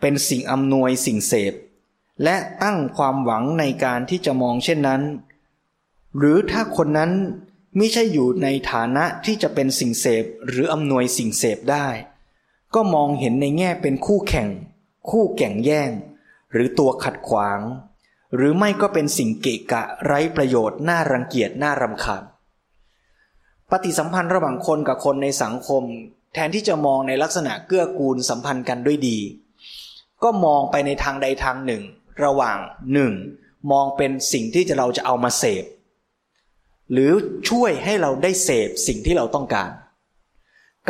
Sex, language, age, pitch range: male, Thai, 20-39, 130-170 Hz